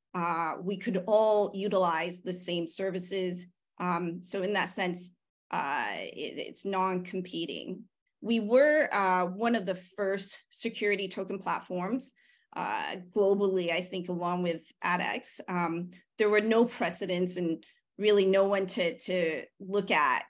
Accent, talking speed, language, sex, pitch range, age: American, 140 wpm, English, female, 180-210 Hz, 30-49